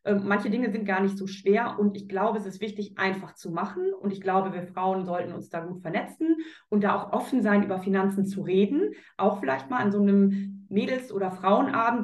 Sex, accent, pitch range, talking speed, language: female, German, 190-215 Hz, 220 wpm, German